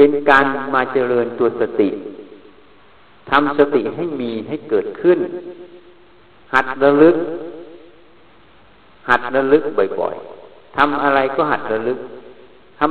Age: 60-79